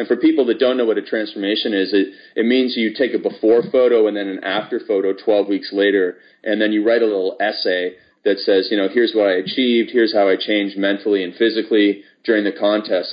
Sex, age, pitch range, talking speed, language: male, 30-49, 100-120 Hz, 235 wpm, English